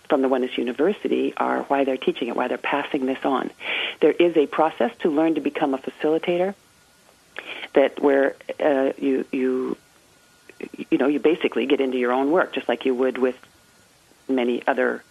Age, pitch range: 40-59, 130-145 Hz